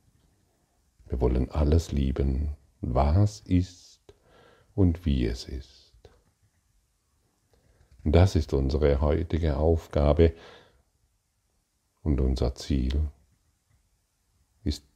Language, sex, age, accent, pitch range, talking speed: German, male, 50-69, German, 70-90 Hz, 80 wpm